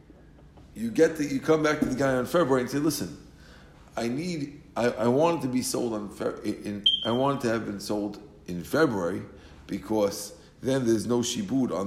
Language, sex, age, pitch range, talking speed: English, male, 50-69, 110-140 Hz, 205 wpm